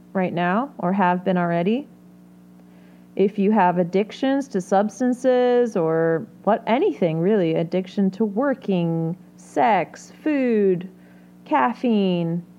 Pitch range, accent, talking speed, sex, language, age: 165-225 Hz, American, 105 wpm, female, English, 30-49